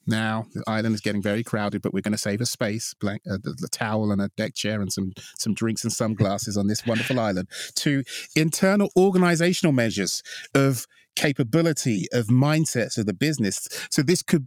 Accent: British